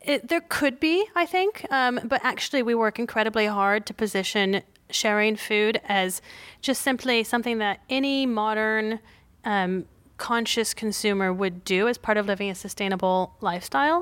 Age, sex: 30-49, female